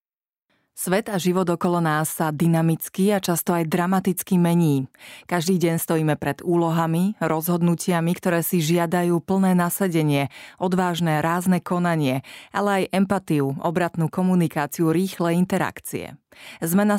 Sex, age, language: female, 30-49, Slovak